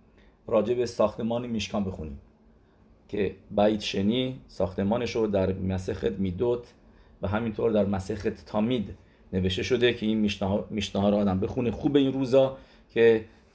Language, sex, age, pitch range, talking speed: English, male, 40-59, 105-130 Hz, 130 wpm